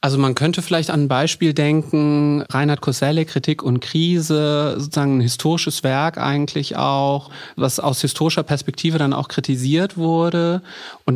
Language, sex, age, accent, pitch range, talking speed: German, male, 30-49, German, 140-165 Hz, 150 wpm